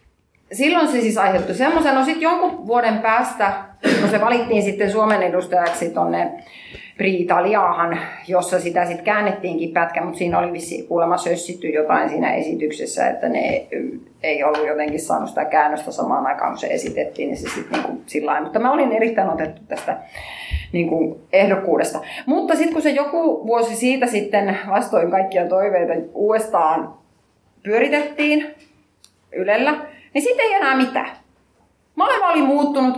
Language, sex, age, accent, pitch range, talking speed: Finnish, female, 30-49, native, 180-275 Hz, 145 wpm